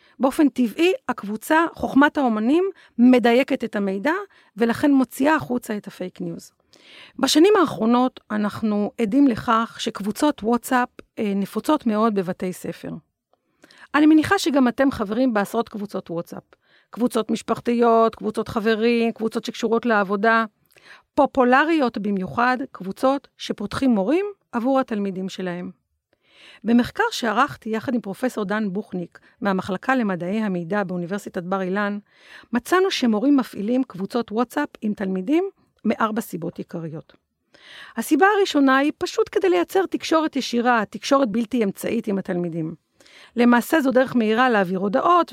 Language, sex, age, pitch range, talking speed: Hebrew, female, 40-59, 205-280 Hz, 120 wpm